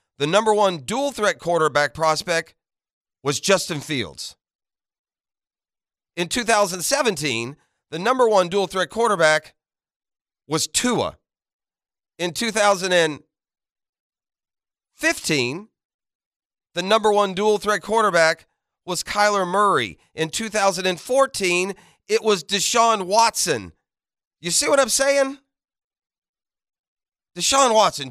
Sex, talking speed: male, 90 wpm